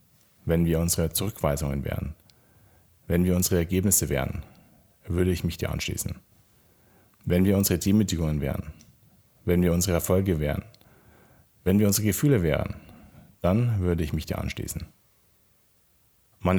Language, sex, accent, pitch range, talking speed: German, male, German, 80-105 Hz, 135 wpm